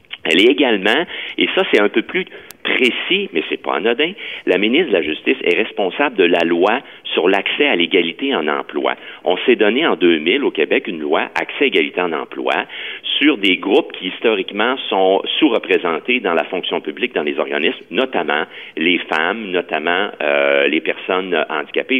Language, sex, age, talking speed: French, male, 50-69, 185 wpm